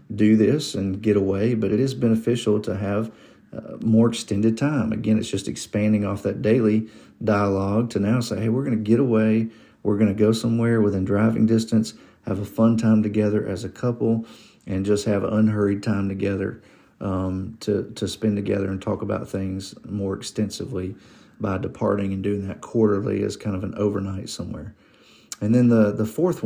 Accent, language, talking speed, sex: American, English, 185 wpm, male